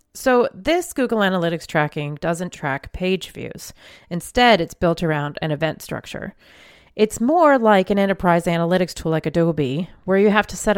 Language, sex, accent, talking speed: English, female, American, 165 wpm